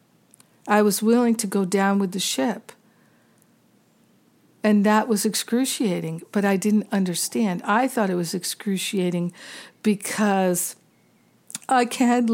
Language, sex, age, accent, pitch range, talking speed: English, female, 60-79, American, 180-220 Hz, 120 wpm